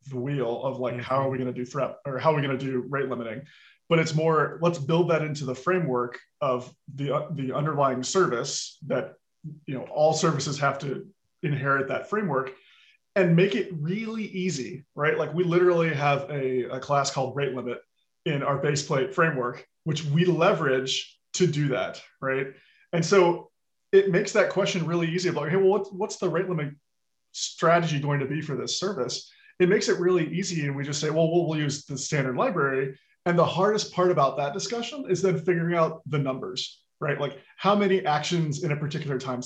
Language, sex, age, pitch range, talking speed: English, male, 20-39, 140-180 Hz, 205 wpm